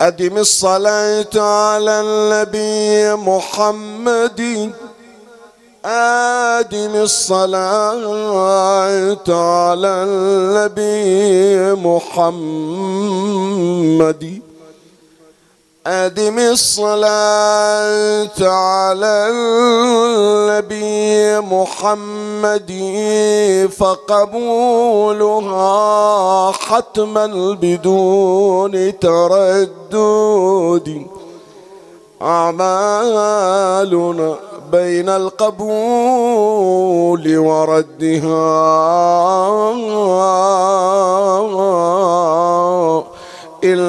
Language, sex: Arabic, male